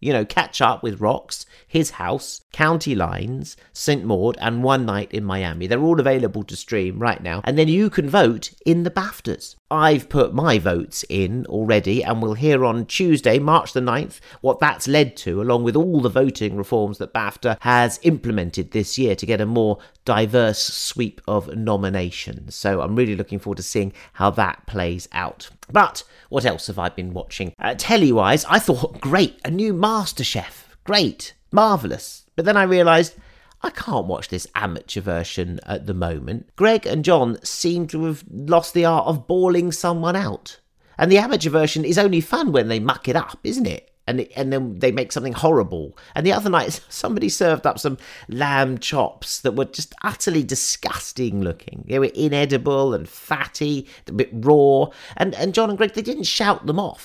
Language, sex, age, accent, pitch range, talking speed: English, male, 40-59, British, 105-165 Hz, 190 wpm